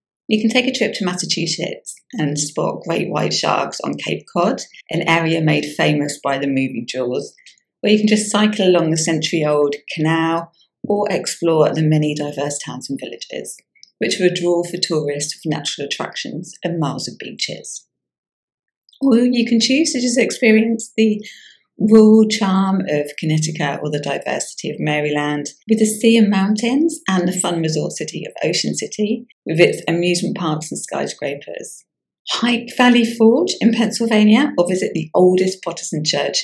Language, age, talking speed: English, 40-59, 165 wpm